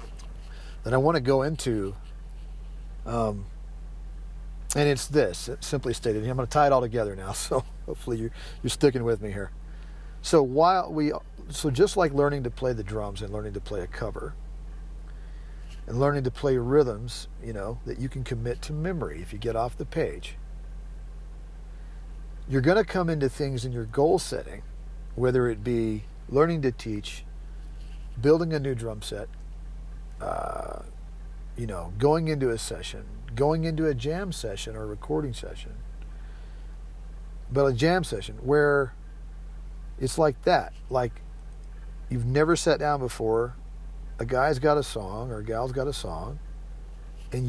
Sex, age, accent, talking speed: male, 40-59, American, 160 wpm